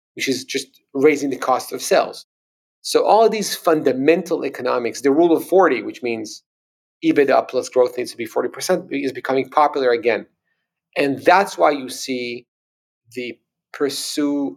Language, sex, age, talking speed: English, male, 40-59, 155 wpm